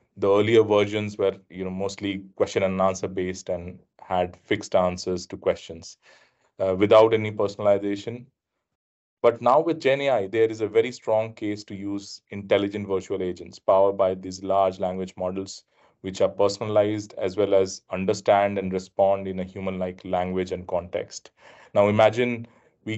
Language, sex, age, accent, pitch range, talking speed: English, male, 30-49, Indian, 95-105 Hz, 160 wpm